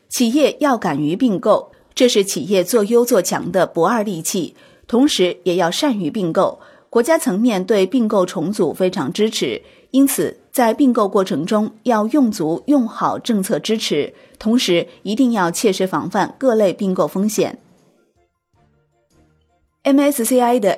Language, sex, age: Chinese, female, 30-49